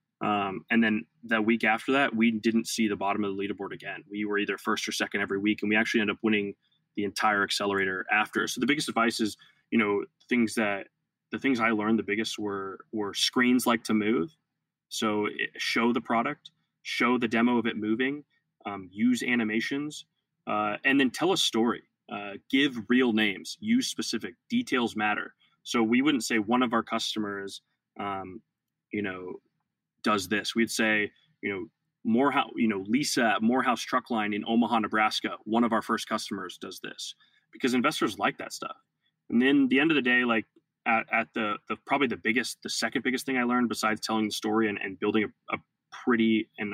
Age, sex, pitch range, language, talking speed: 20-39, male, 105-125 Hz, English, 200 wpm